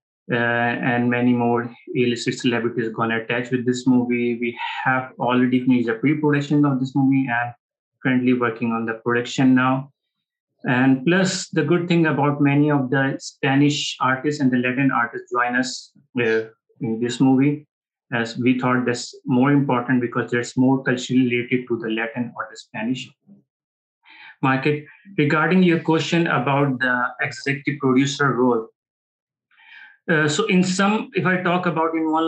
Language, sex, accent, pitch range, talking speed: English, male, Indian, 125-150 Hz, 160 wpm